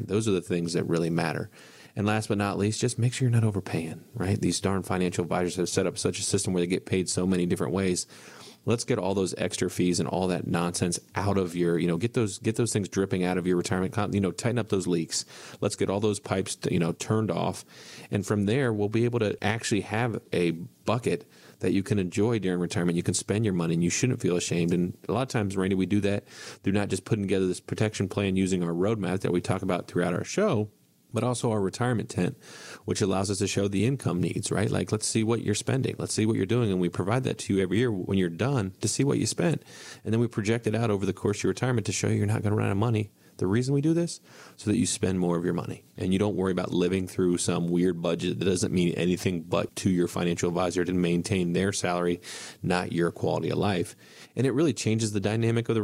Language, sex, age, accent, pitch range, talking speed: English, male, 30-49, American, 90-110 Hz, 260 wpm